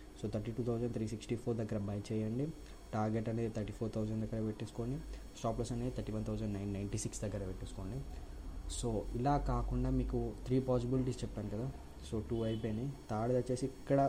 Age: 20-39